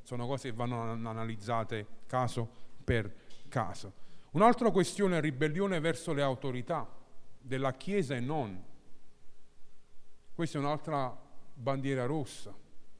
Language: Italian